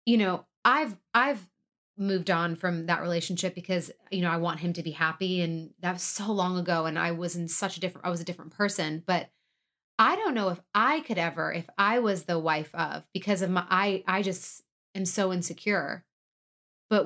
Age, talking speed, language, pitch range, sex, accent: 30-49, 210 wpm, English, 170-210 Hz, female, American